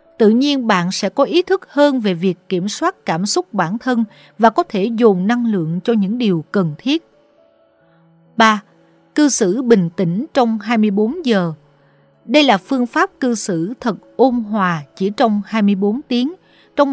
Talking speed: 175 wpm